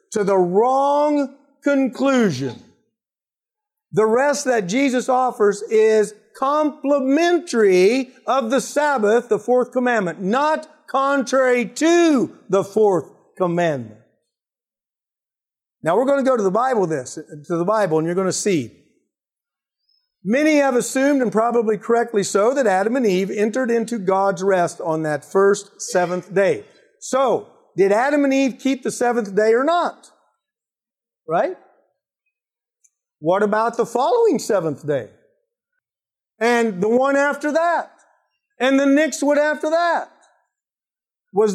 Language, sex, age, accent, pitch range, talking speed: English, male, 50-69, American, 210-285 Hz, 130 wpm